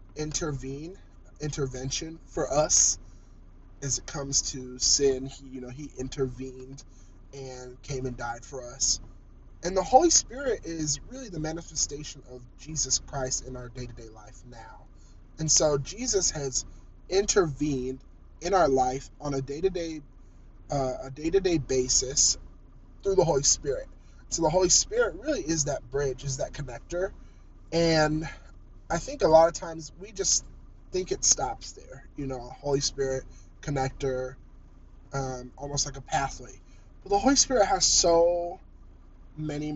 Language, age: English, 20-39